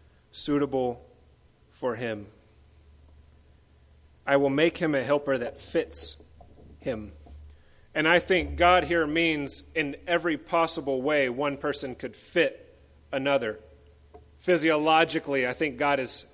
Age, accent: 30-49, American